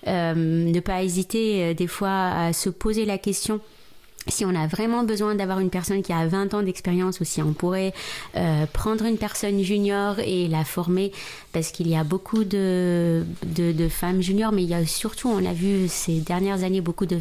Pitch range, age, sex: 170-200 Hz, 30-49, female